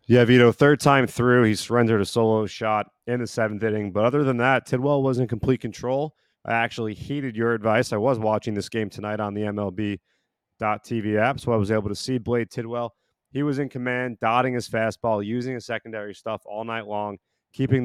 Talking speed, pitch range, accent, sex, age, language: 205 wpm, 105-125 Hz, American, male, 30-49, English